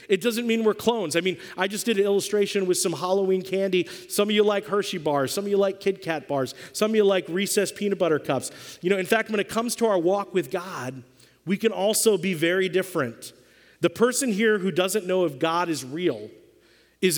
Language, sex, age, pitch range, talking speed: English, male, 40-59, 150-200 Hz, 230 wpm